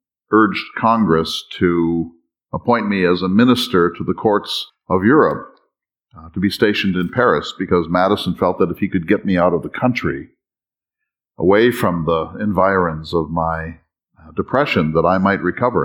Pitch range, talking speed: 85-110 Hz, 165 wpm